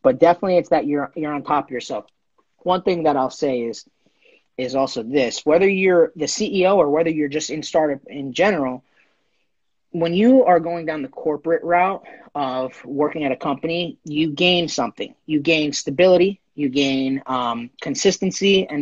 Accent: American